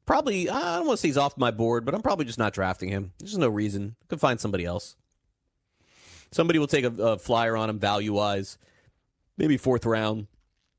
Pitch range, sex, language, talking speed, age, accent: 95-120 Hz, male, English, 205 wpm, 30-49, American